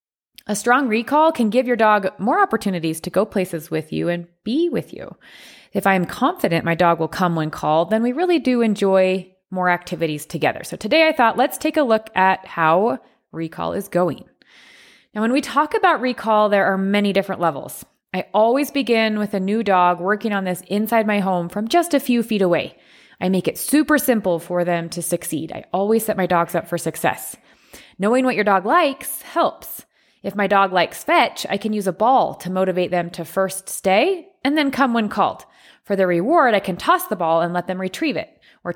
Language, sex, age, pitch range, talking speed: English, female, 20-39, 180-250 Hz, 210 wpm